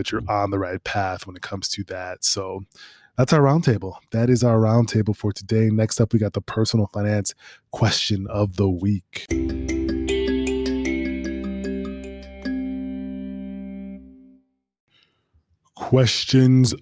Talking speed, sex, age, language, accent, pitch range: 120 wpm, male, 20-39, English, American, 100-120 Hz